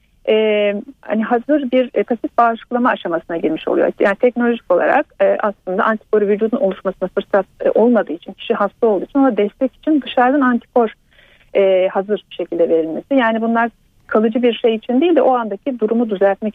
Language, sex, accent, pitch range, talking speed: Turkish, female, native, 200-265 Hz, 170 wpm